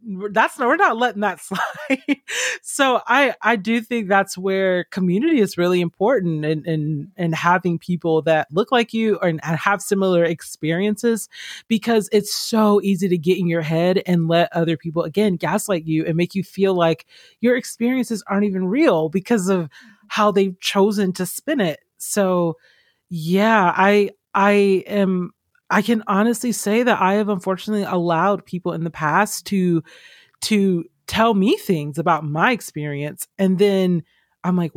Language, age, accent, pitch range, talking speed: English, 30-49, American, 165-210 Hz, 165 wpm